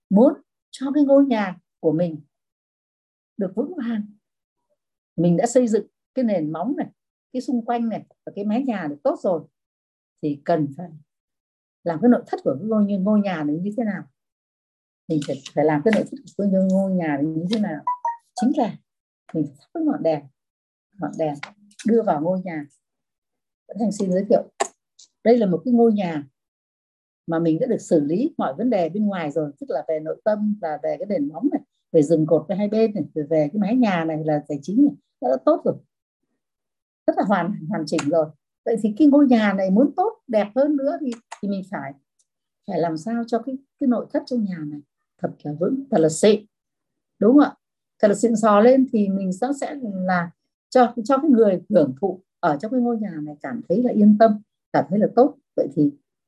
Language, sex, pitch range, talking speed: Vietnamese, female, 160-245 Hz, 210 wpm